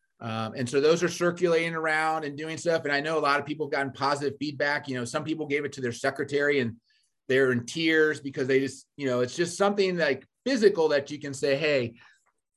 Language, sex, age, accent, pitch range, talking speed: English, male, 30-49, American, 125-165 Hz, 240 wpm